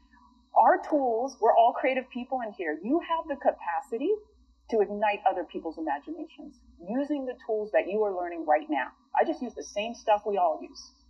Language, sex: English, female